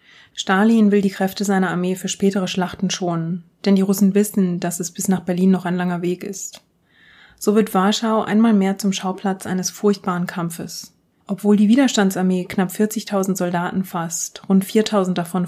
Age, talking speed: 30-49, 170 wpm